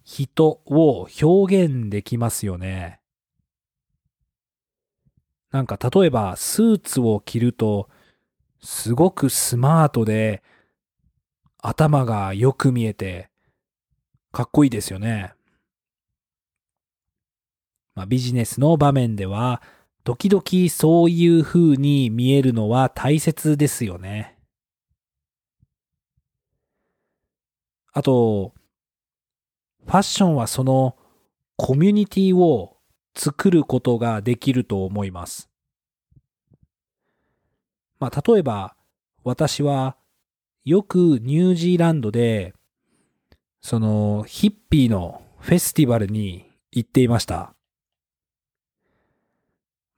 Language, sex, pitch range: Japanese, male, 110-155 Hz